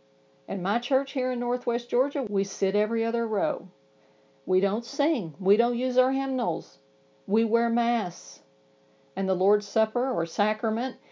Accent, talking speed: American, 155 wpm